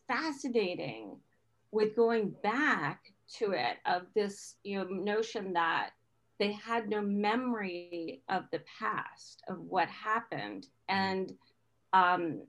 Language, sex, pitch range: English, female, 170-210 Hz